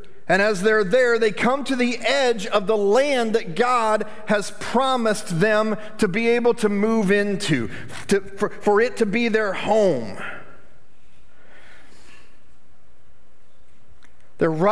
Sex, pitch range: male, 175-230 Hz